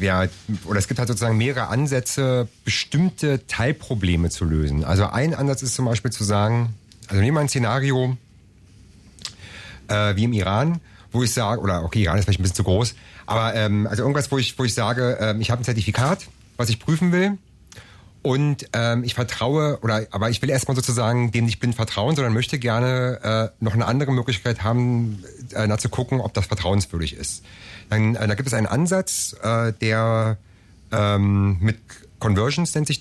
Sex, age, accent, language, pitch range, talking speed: male, 30-49, German, German, 105-135 Hz, 185 wpm